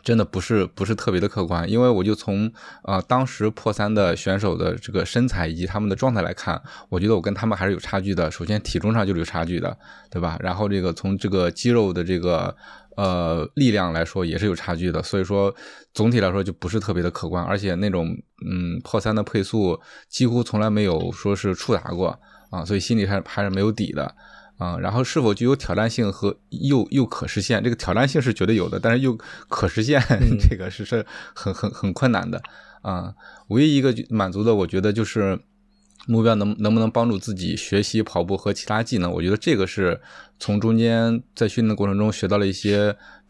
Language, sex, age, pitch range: Chinese, male, 20-39, 95-110 Hz